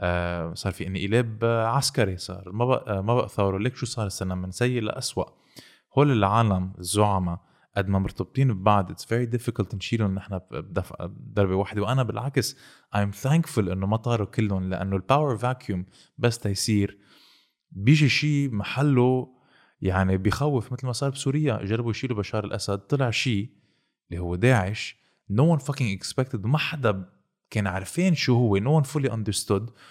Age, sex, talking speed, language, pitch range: 20-39, male, 160 wpm, Arabic, 100-130 Hz